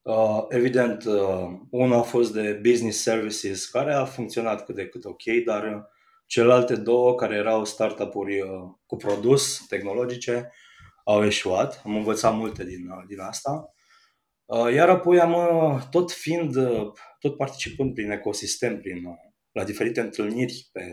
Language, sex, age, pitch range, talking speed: Romanian, male, 20-39, 105-140 Hz, 150 wpm